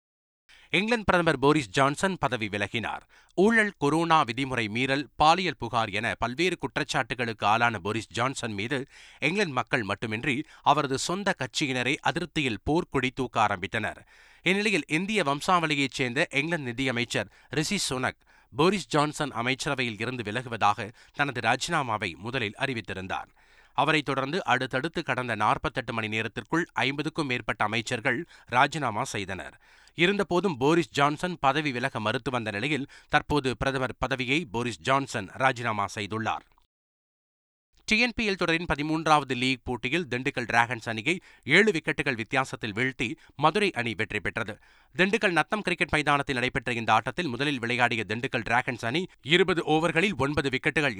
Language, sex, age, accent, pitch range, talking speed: Tamil, male, 30-49, native, 120-155 Hz, 125 wpm